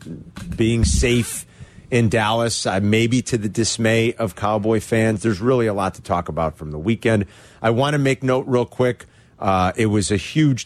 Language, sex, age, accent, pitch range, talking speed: English, male, 40-59, American, 100-120 Hz, 190 wpm